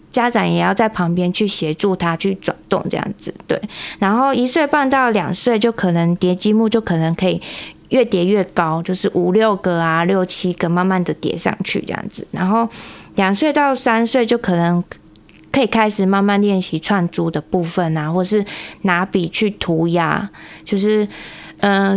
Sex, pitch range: female, 180-230 Hz